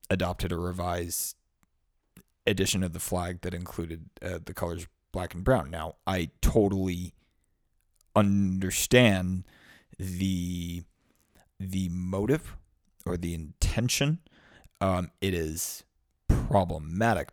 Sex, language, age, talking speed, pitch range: male, English, 30-49, 100 wpm, 95-135 Hz